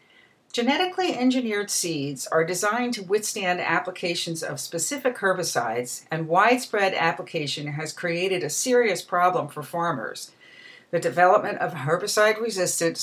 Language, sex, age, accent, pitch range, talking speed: English, female, 50-69, American, 160-225 Hz, 115 wpm